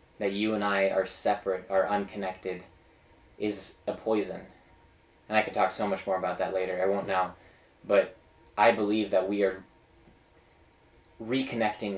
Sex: male